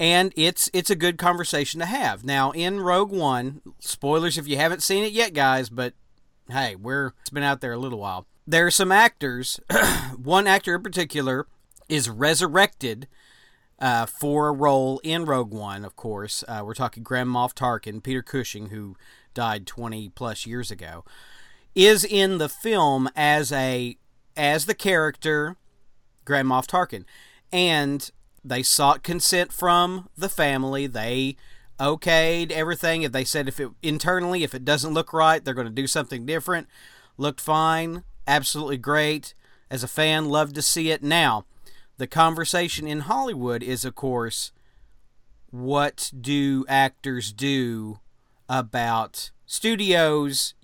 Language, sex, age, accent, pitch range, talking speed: English, male, 40-59, American, 125-165 Hz, 150 wpm